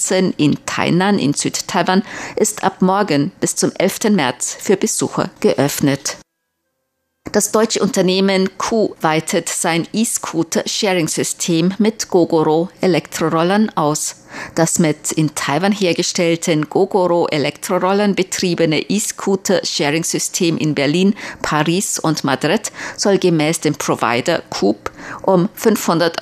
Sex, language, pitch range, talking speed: female, German, 150-195 Hz, 100 wpm